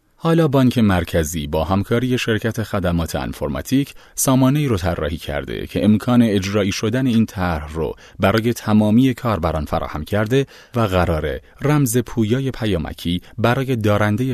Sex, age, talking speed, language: male, 30-49, 130 wpm, Persian